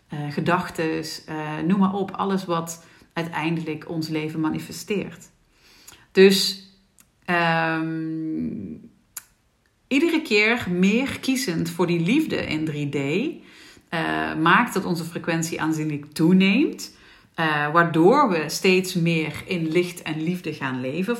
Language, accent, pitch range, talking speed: Dutch, Dutch, 155-190 Hz, 110 wpm